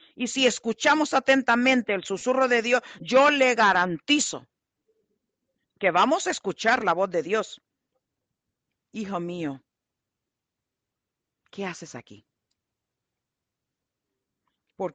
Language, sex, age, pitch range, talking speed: English, female, 50-69, 175-245 Hz, 100 wpm